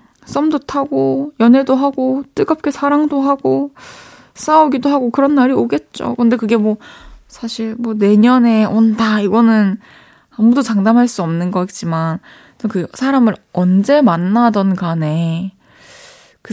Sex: female